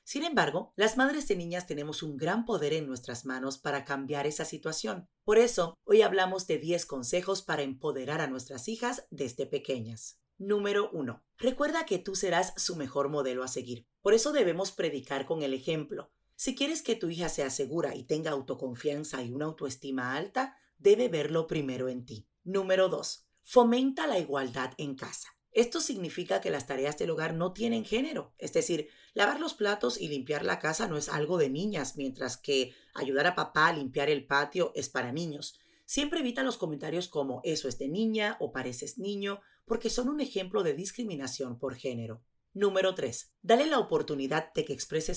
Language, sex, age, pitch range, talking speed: Spanish, female, 40-59, 140-215 Hz, 185 wpm